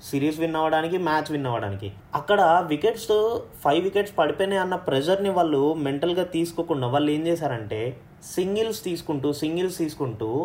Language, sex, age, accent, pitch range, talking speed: Telugu, male, 20-39, native, 130-170 Hz, 130 wpm